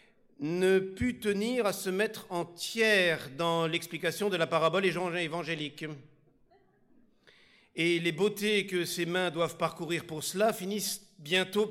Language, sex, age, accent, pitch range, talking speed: French, male, 50-69, French, 170-225 Hz, 130 wpm